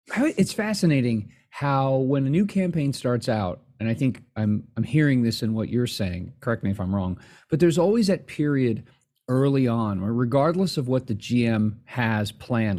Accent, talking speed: American, 190 wpm